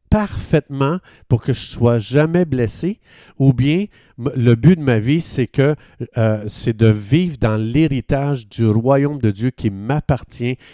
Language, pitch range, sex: French, 110-140 Hz, male